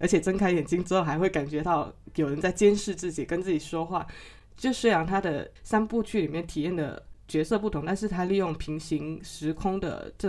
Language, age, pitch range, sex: Chinese, 20-39, 155-195 Hz, female